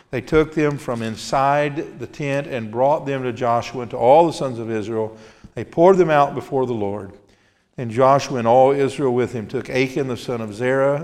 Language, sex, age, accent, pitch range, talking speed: English, male, 50-69, American, 115-140 Hz, 210 wpm